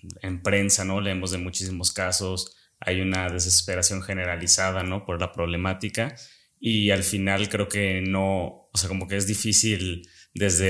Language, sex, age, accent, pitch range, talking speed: Spanish, male, 20-39, Mexican, 95-105 Hz, 155 wpm